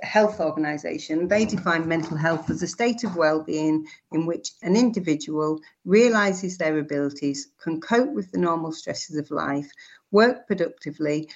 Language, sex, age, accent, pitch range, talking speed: English, female, 50-69, British, 160-210 Hz, 150 wpm